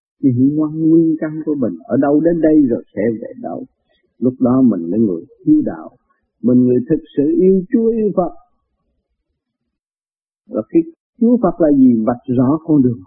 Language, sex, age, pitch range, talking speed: Vietnamese, male, 50-69, 135-205 Hz, 185 wpm